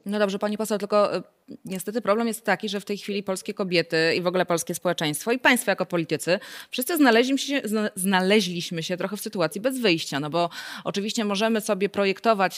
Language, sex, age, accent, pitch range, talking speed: Polish, female, 20-39, native, 165-200 Hz, 180 wpm